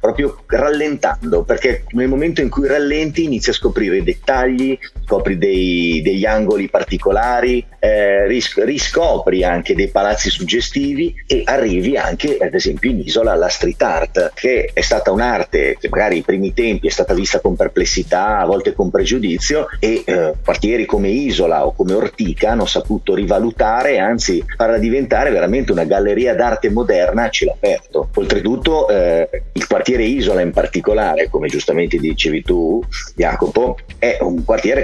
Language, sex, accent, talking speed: Italian, male, native, 155 wpm